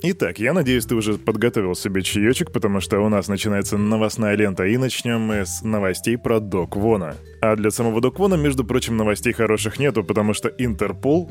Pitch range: 105-125 Hz